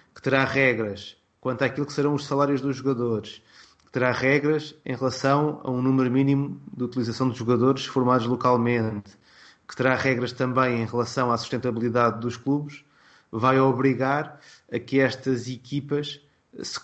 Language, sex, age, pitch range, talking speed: Portuguese, male, 20-39, 125-145 Hz, 155 wpm